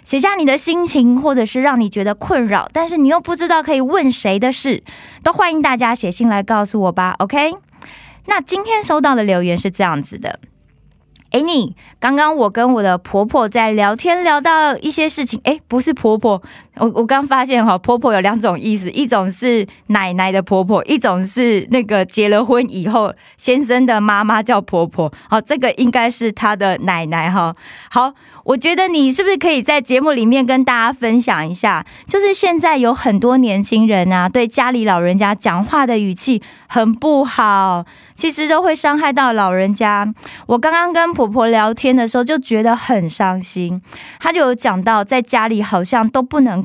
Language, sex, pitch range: Korean, female, 200-280 Hz